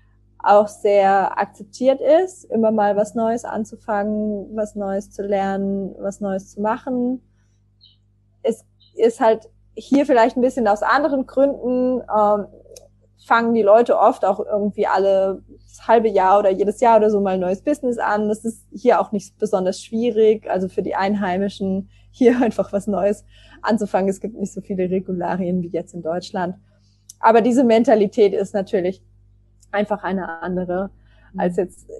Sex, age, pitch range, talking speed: female, 20-39, 185-225 Hz, 160 wpm